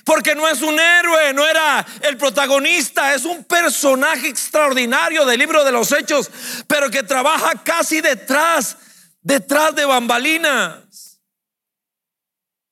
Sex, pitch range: male, 210-285 Hz